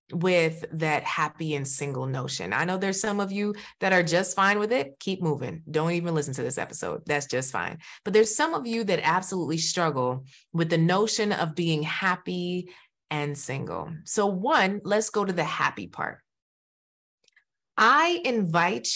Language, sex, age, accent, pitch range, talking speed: English, female, 20-39, American, 165-230 Hz, 175 wpm